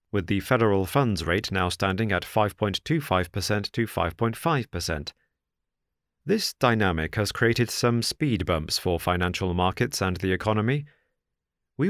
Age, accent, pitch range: 40-59, British, 90-125 Hz